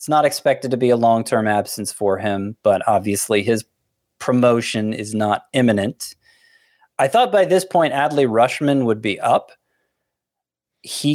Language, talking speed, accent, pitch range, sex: English, 150 wpm, American, 105-130 Hz, male